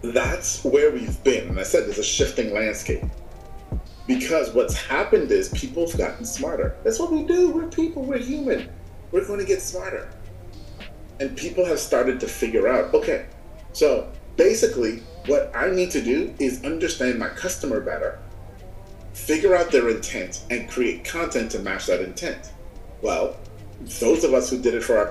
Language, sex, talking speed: English, male, 170 wpm